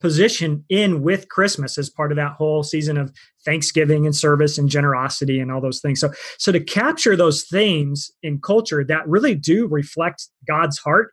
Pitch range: 140-170 Hz